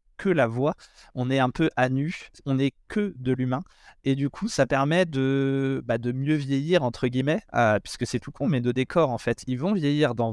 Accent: French